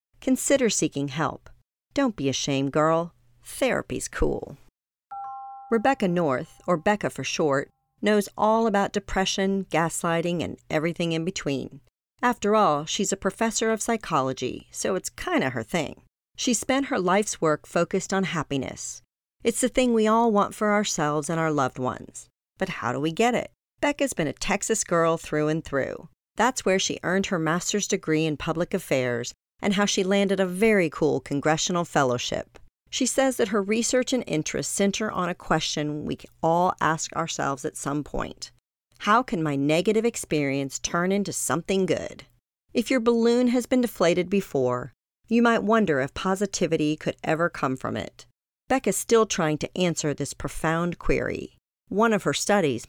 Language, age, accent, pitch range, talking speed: English, 40-59, American, 150-215 Hz, 170 wpm